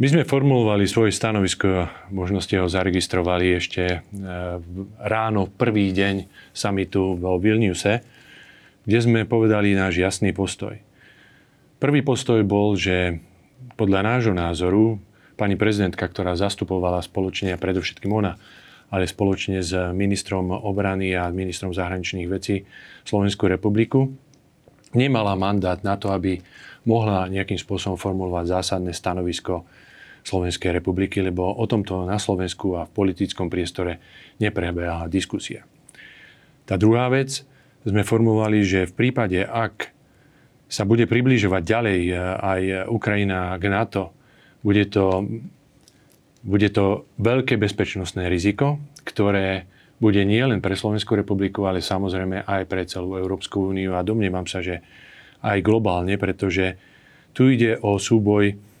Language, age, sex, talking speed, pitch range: Slovak, 30-49, male, 120 wpm, 95-110 Hz